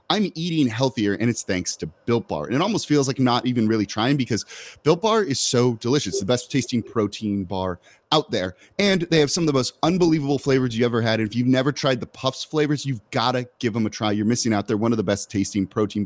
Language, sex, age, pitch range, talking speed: English, male, 30-49, 110-135 Hz, 260 wpm